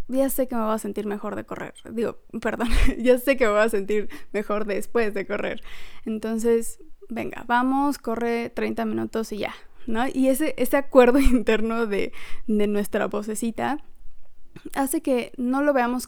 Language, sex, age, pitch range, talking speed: Spanish, female, 20-39, 220-270 Hz, 170 wpm